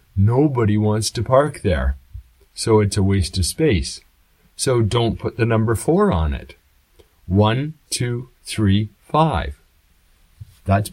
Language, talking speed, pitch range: English, 130 wpm, 85-120 Hz